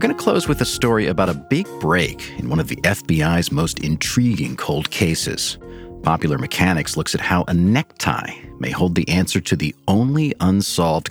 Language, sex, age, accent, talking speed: English, male, 40-59, American, 190 wpm